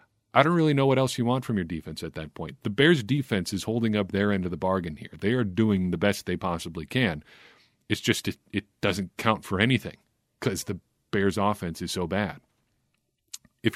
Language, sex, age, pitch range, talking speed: English, male, 40-59, 90-120 Hz, 220 wpm